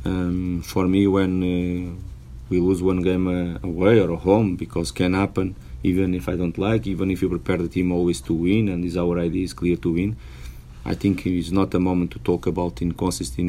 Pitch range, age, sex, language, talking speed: 85-95 Hz, 30-49, male, English, 220 wpm